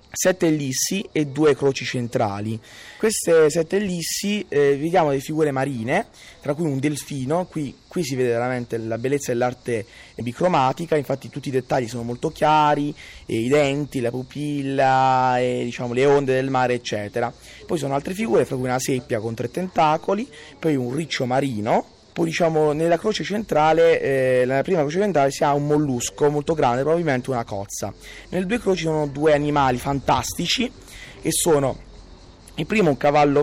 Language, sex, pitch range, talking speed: Italian, male, 120-155 Hz, 170 wpm